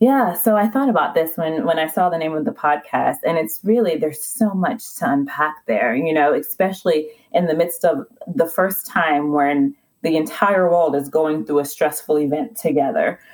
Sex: female